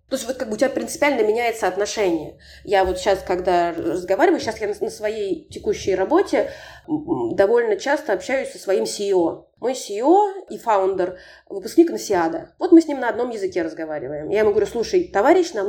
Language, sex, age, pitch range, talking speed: Russian, female, 20-39, 205-315 Hz, 180 wpm